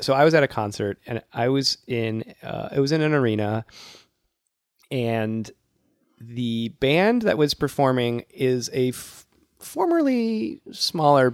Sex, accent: male, American